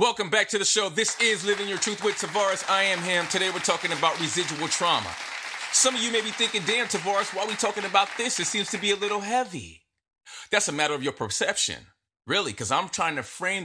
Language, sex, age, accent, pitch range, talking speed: English, male, 30-49, American, 150-200 Hz, 240 wpm